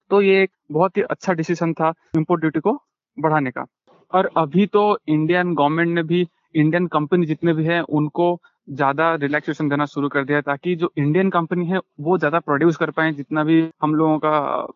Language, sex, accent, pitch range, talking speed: Hindi, male, native, 150-170 Hz, 195 wpm